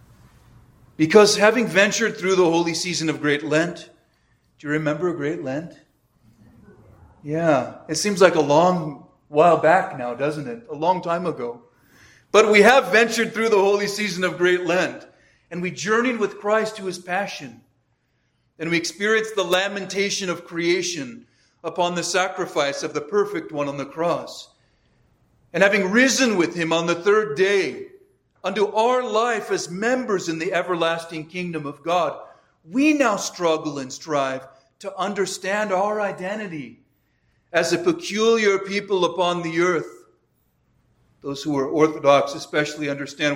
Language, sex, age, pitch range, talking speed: English, male, 40-59, 145-200 Hz, 150 wpm